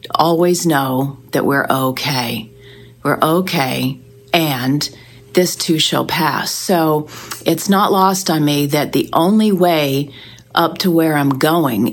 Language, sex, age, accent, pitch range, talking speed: English, female, 40-59, American, 140-165 Hz, 135 wpm